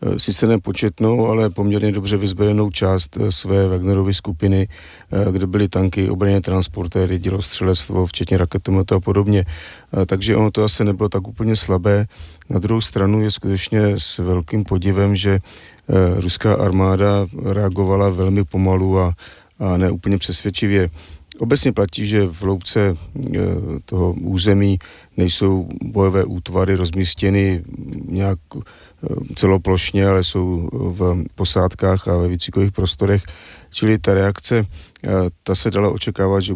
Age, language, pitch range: 40-59, Czech, 90-100 Hz